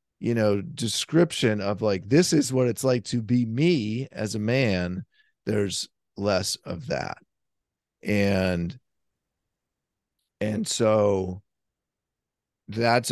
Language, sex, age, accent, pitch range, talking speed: English, male, 40-59, American, 95-125 Hz, 110 wpm